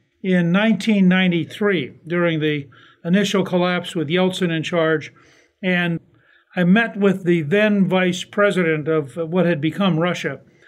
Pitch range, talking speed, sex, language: 165-195 Hz, 130 wpm, male, English